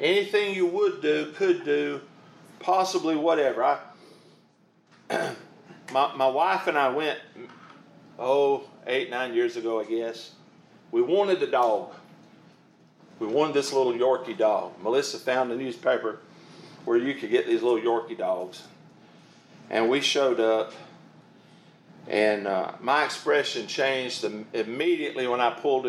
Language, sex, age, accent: English, male, 50-69, American